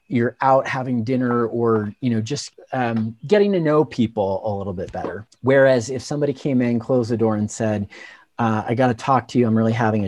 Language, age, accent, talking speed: English, 40-59, American, 225 wpm